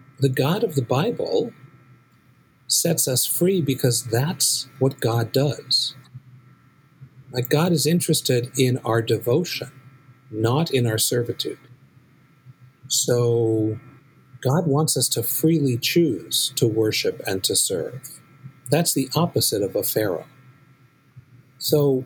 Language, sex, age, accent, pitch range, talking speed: English, male, 50-69, American, 120-140 Hz, 115 wpm